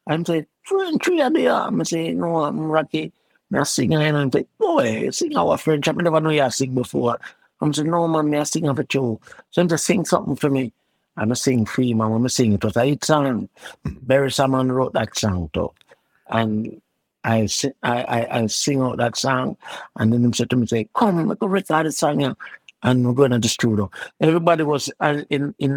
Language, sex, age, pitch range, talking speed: English, male, 60-79, 125-180 Hz, 220 wpm